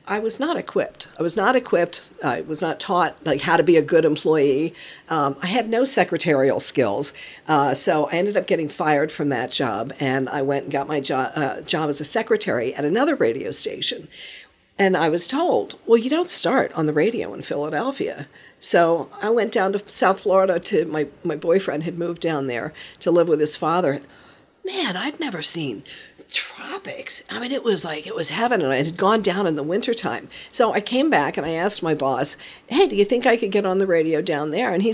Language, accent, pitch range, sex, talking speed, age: English, American, 165-245 Hz, female, 220 wpm, 50-69